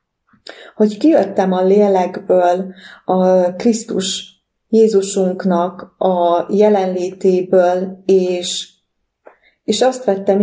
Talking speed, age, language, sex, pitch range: 75 wpm, 30-49, English, female, 180-220 Hz